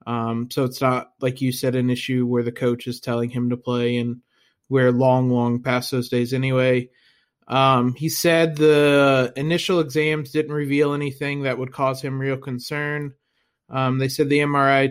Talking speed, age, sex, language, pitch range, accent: 180 wpm, 20-39, male, English, 125-150 Hz, American